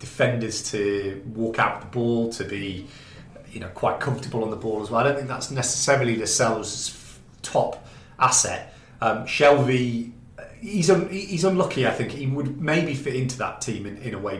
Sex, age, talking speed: male, 30-49, 190 wpm